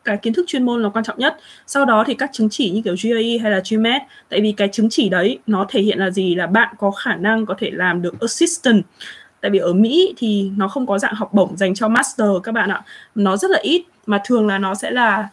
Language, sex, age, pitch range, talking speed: Vietnamese, female, 20-39, 200-245 Hz, 270 wpm